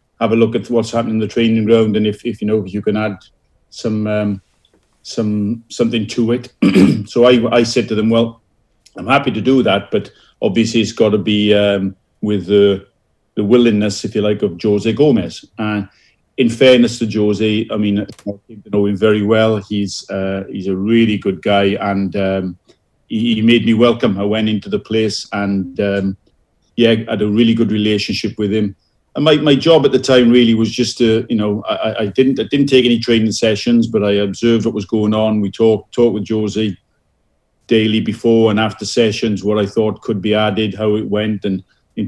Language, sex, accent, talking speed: English, male, British, 205 wpm